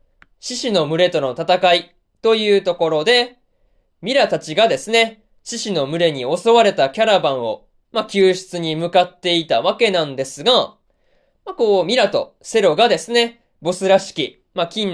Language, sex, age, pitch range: Japanese, male, 20-39, 165-230 Hz